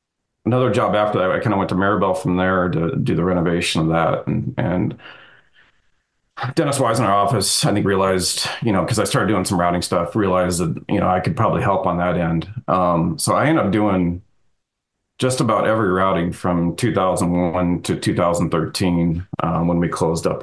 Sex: male